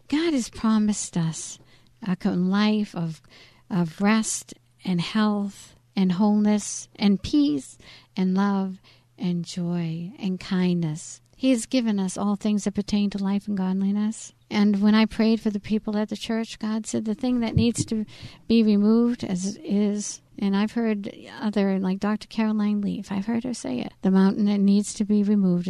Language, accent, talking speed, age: English, American, 175 wpm, 60-79